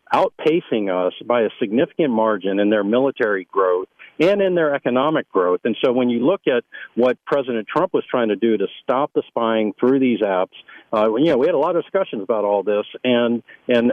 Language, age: English, 50-69